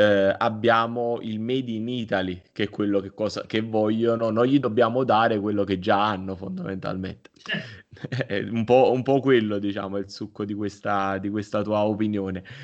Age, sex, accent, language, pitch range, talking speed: 20-39, male, native, Italian, 110-130 Hz, 170 wpm